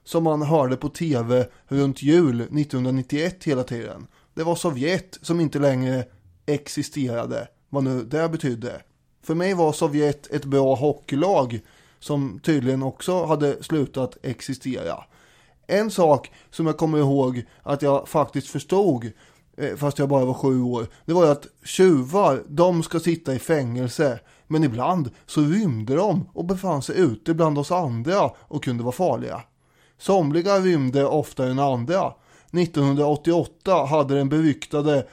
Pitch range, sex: 130-160 Hz, male